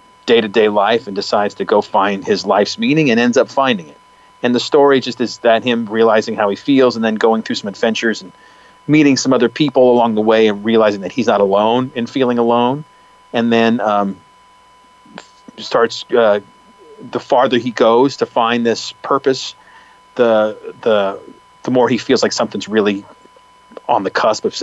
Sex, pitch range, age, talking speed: male, 100-135 Hz, 40-59, 190 wpm